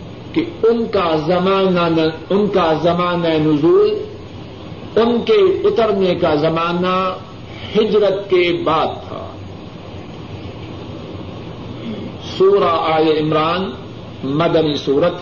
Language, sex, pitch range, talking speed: Urdu, male, 150-190 Hz, 85 wpm